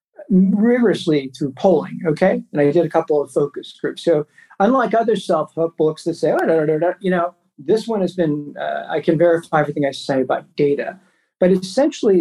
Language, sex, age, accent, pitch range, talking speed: English, male, 50-69, American, 165-225 Hz, 195 wpm